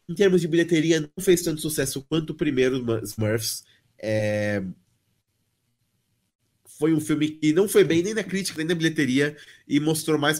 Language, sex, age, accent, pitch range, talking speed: Portuguese, male, 20-39, Brazilian, 135-180 Hz, 160 wpm